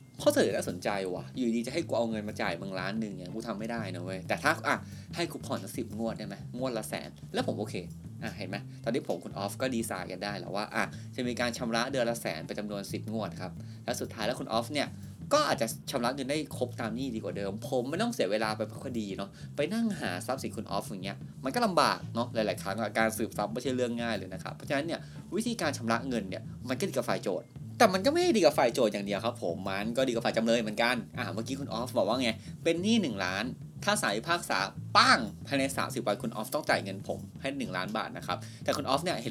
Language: Thai